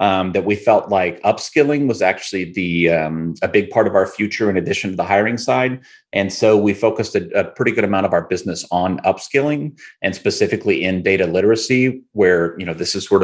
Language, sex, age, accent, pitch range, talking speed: English, male, 30-49, American, 90-110 Hz, 215 wpm